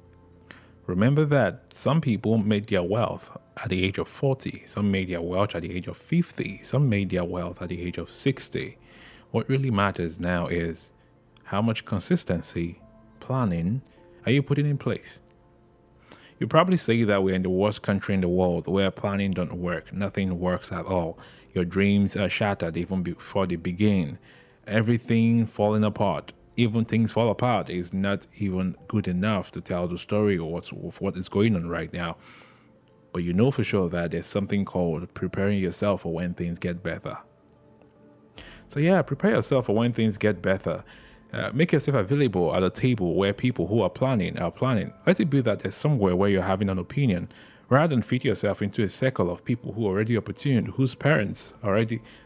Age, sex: 20-39, male